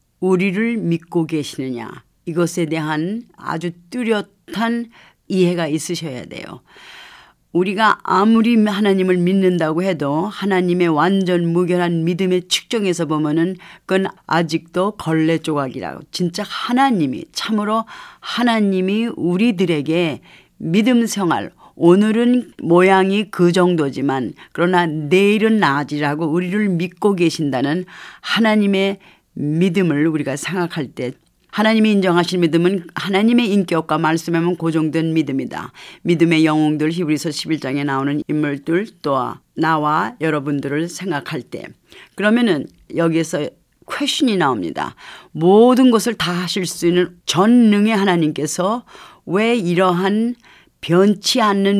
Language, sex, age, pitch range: Korean, female, 40-59, 160-195 Hz